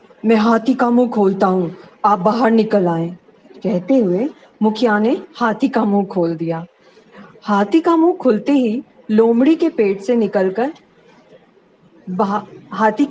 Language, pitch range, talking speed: Hindi, 195-270 Hz, 135 wpm